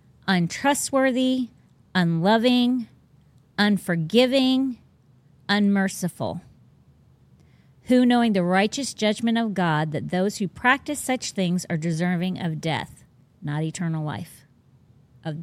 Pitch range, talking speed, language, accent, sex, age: 160-215 Hz, 95 wpm, English, American, female, 40-59